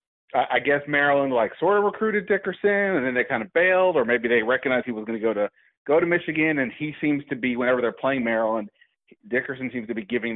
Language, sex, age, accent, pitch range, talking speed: English, male, 30-49, American, 110-135 Hz, 240 wpm